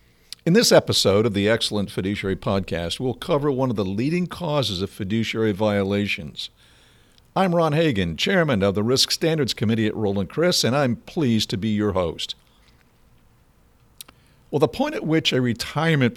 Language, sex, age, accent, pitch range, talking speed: English, male, 50-69, American, 100-140 Hz, 165 wpm